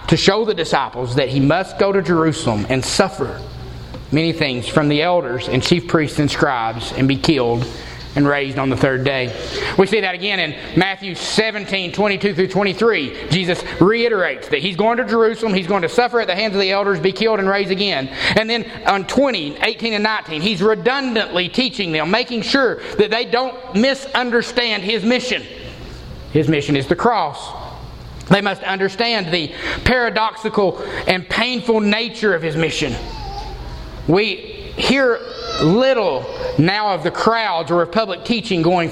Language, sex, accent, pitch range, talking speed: English, male, American, 165-225 Hz, 170 wpm